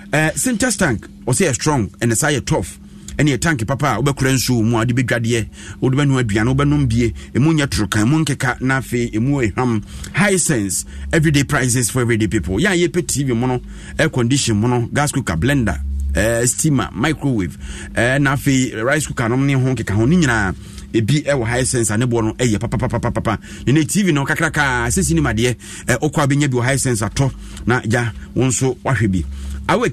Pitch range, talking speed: 110-150 Hz, 170 wpm